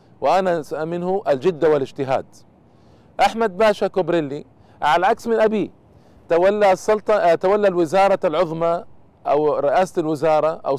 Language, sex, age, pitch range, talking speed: Arabic, male, 40-59, 150-185 Hz, 105 wpm